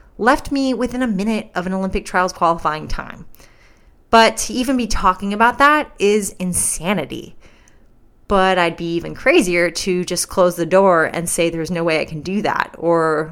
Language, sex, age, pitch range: English, female, 30-49, 170-230 Hz